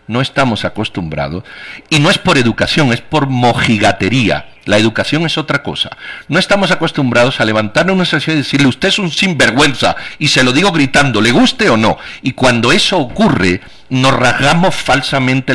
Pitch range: 110-160 Hz